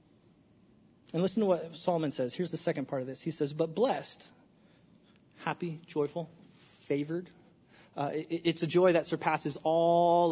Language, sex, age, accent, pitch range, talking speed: English, male, 30-49, American, 160-220 Hz, 155 wpm